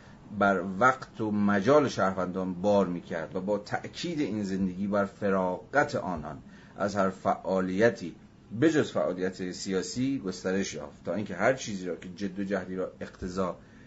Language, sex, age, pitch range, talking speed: Persian, male, 30-49, 95-115 Hz, 145 wpm